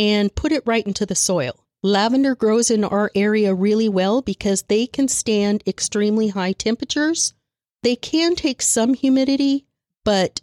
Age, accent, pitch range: 40-59, American, 185-230 Hz